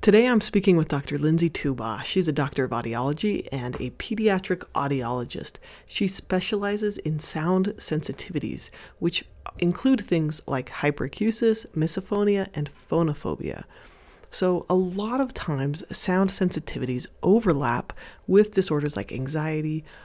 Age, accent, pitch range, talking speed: 30-49, American, 155-200 Hz, 125 wpm